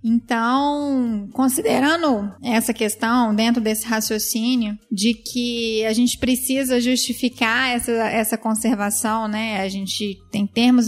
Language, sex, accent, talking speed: Portuguese, female, Brazilian, 115 wpm